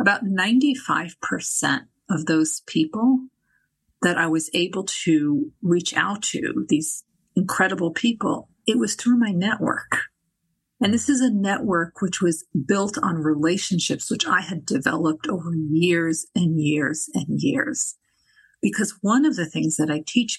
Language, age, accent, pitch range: English, 50-69, American, 165-225 Hz